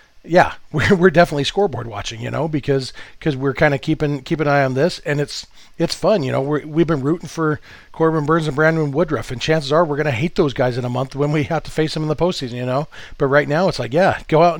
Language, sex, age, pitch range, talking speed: English, male, 40-59, 130-155 Hz, 275 wpm